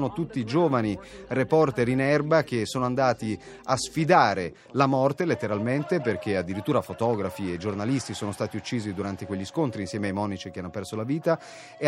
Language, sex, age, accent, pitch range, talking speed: Italian, male, 30-49, native, 105-135 Hz, 170 wpm